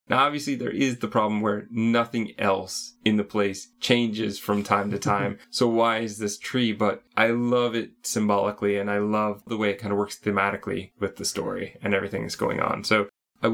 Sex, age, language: male, 20-39, English